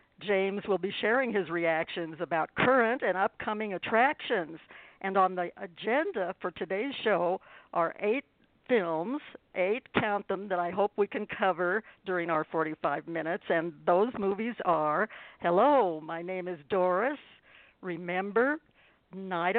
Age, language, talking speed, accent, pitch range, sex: 60-79, English, 140 wpm, American, 175-230 Hz, female